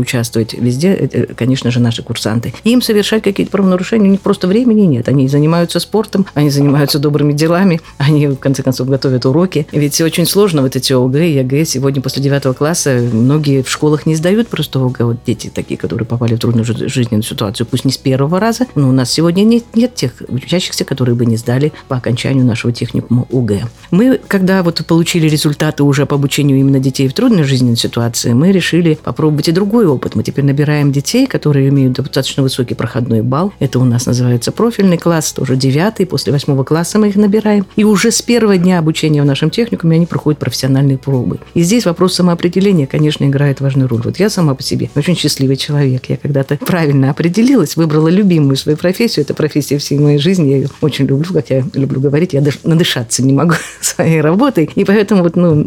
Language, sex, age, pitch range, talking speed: Russian, female, 50-69, 130-170 Hz, 195 wpm